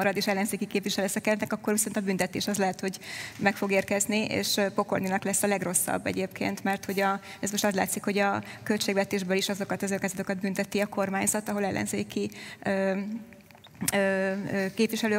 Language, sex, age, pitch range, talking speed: Hungarian, female, 20-39, 195-215 Hz, 160 wpm